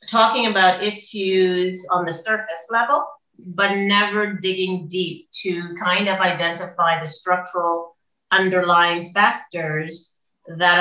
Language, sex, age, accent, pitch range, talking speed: English, female, 40-59, American, 160-190 Hz, 110 wpm